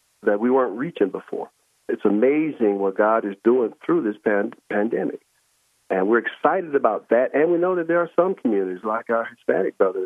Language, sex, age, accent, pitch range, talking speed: English, male, 50-69, American, 115-170 Hz, 185 wpm